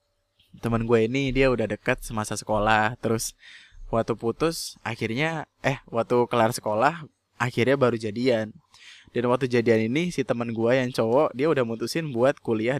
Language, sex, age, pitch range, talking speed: Indonesian, male, 20-39, 110-135 Hz, 155 wpm